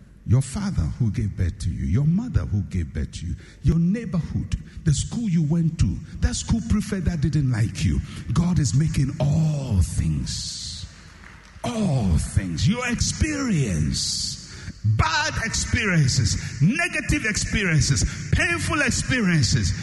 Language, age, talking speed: English, 60-79, 130 wpm